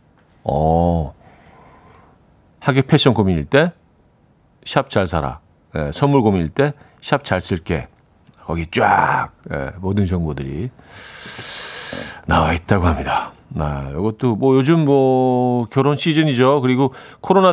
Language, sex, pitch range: Korean, male, 95-140 Hz